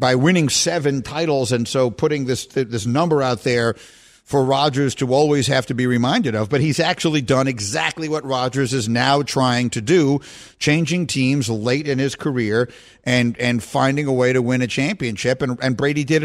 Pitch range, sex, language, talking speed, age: 120-155 Hz, male, English, 195 wpm, 50-69